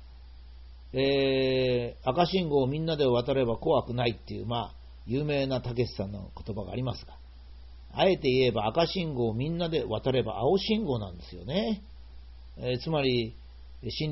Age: 40-59